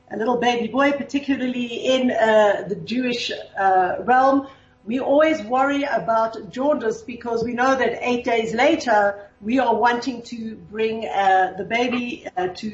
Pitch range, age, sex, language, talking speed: 220-275 Hz, 50-69, female, English, 155 wpm